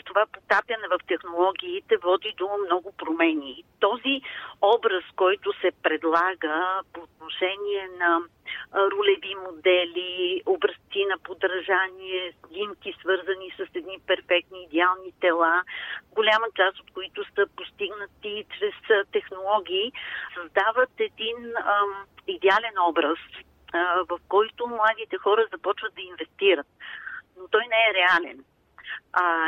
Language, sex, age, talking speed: Bulgarian, female, 50-69, 110 wpm